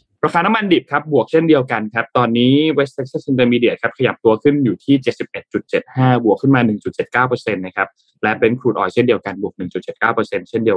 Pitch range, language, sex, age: 110-145 Hz, Thai, male, 20-39